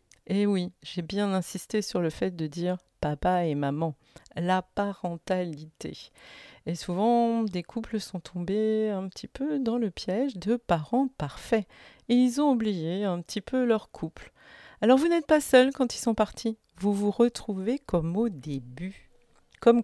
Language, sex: French, female